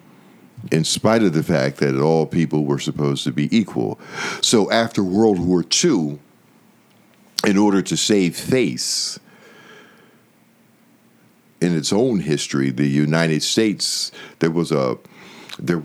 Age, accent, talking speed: 60-79, American, 130 wpm